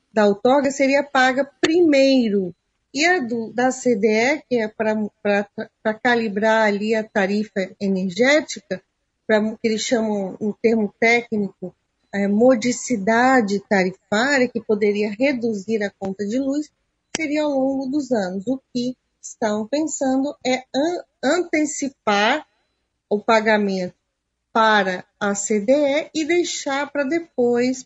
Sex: female